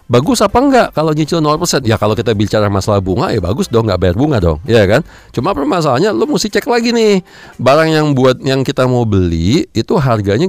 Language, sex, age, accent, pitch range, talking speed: Indonesian, male, 40-59, native, 100-145 Hz, 210 wpm